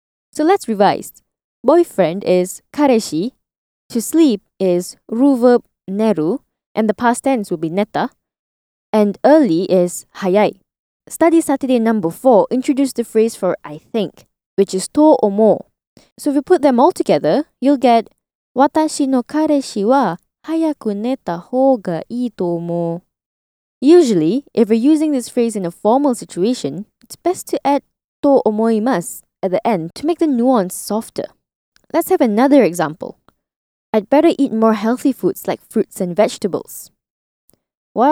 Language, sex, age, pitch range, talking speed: English, female, 20-39, 190-280 Hz, 150 wpm